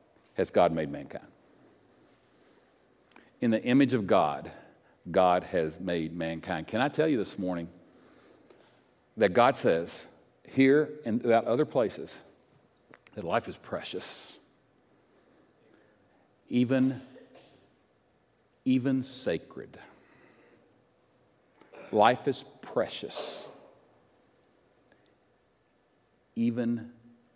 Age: 50-69